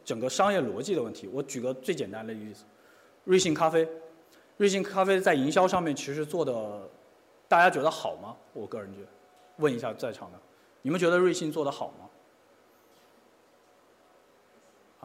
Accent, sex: native, male